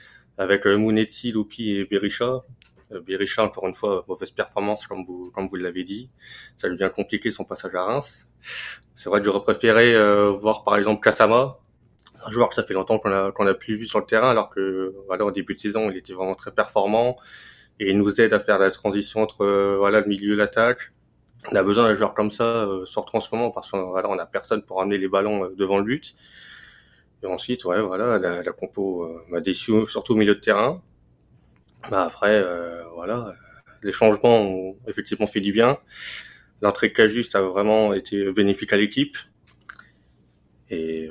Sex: male